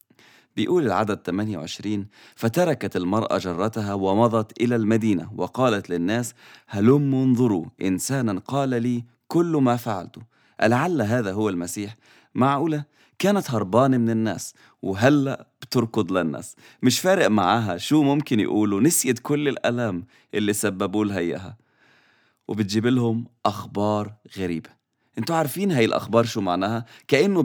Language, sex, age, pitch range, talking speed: English, male, 30-49, 105-135 Hz, 120 wpm